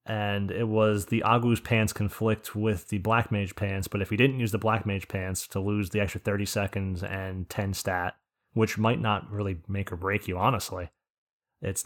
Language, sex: English, male